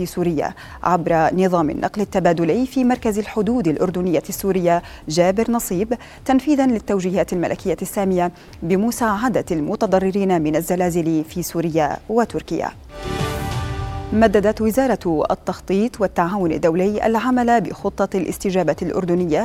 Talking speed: 100 wpm